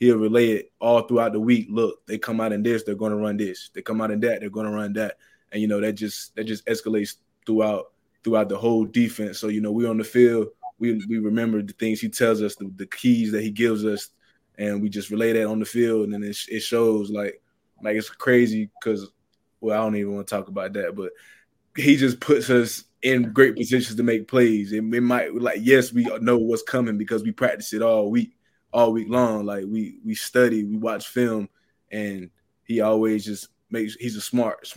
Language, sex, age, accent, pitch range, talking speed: English, male, 20-39, American, 105-115 Hz, 235 wpm